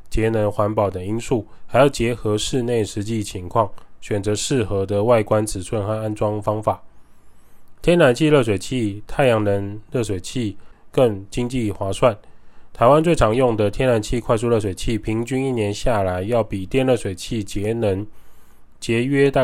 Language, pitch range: Chinese, 105-125 Hz